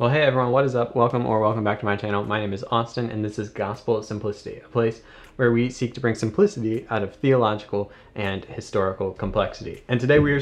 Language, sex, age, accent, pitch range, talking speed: English, male, 20-39, American, 105-130 Hz, 230 wpm